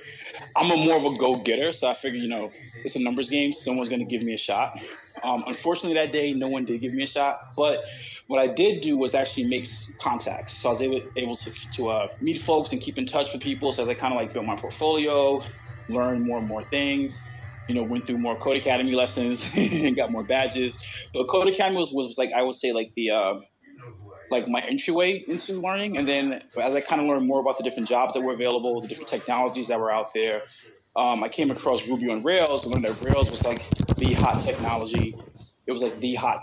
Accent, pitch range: American, 115-135 Hz